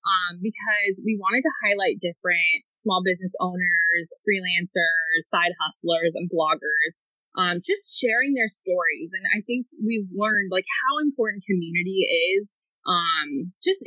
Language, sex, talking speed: English, female, 140 wpm